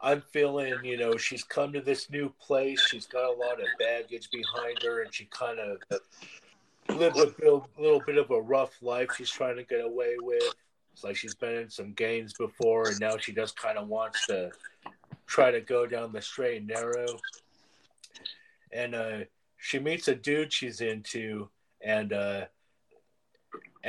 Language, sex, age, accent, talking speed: English, male, 40-59, American, 180 wpm